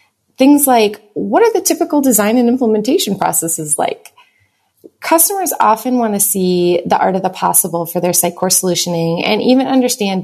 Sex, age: female, 30-49